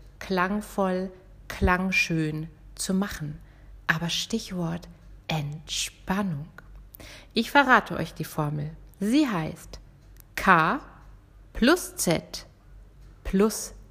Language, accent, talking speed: German, German, 80 wpm